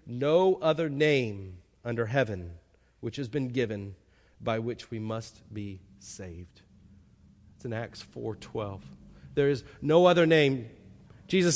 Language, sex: English, male